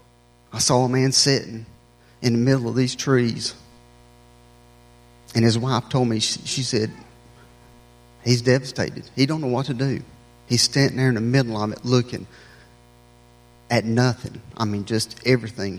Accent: American